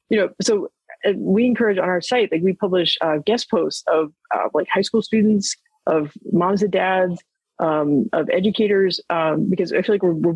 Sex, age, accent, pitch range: female, 30-49, American, 170-205 Hz